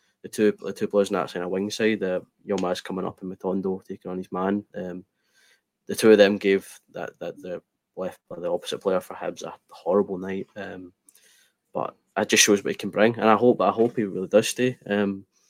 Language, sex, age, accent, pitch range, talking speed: English, male, 20-39, British, 95-105 Hz, 230 wpm